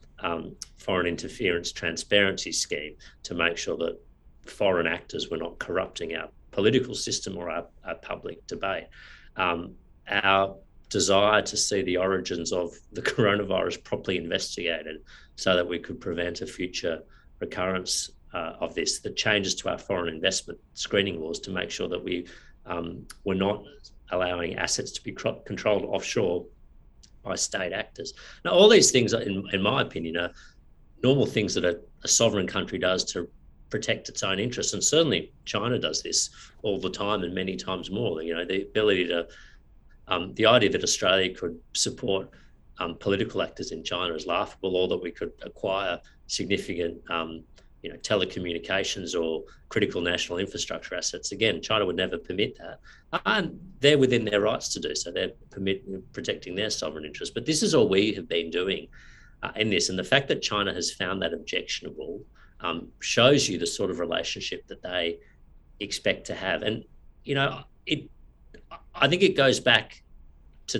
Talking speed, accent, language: 170 wpm, Australian, English